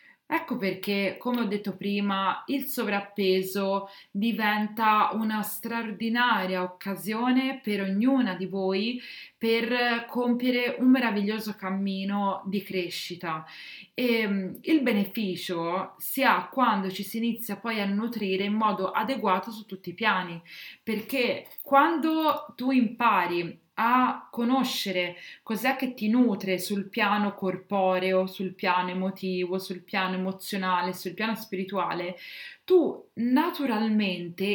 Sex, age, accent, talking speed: female, 30-49, native, 115 wpm